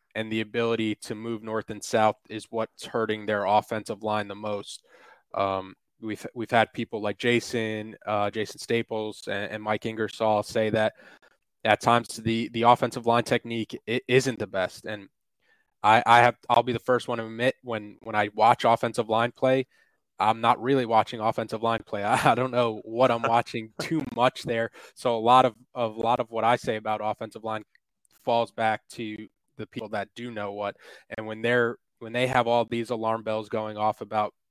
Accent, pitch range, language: American, 105-115 Hz, English